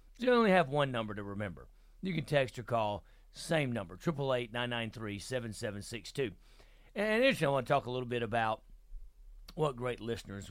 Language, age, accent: English, 40-59, American